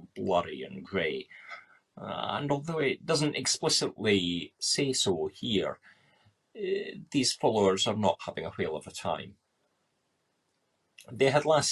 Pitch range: 95-130 Hz